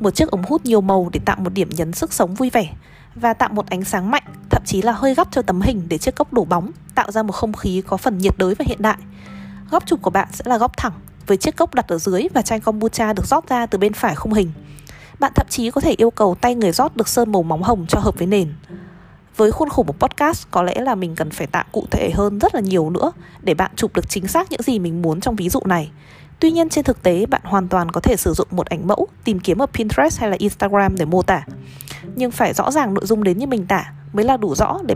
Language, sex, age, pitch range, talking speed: Vietnamese, female, 20-39, 180-250 Hz, 280 wpm